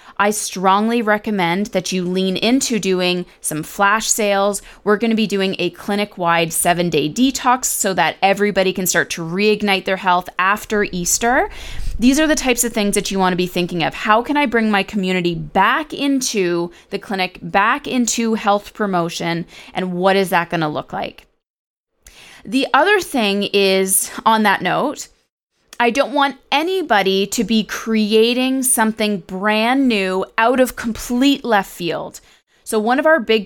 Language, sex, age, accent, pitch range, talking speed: English, female, 20-39, American, 185-235 Hz, 165 wpm